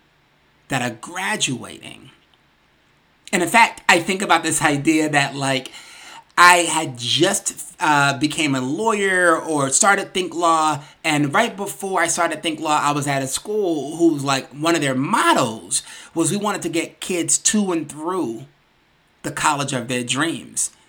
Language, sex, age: English, male, 30-49